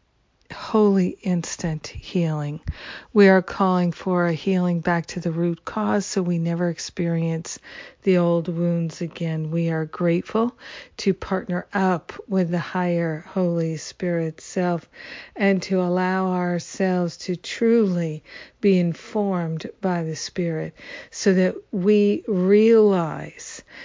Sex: female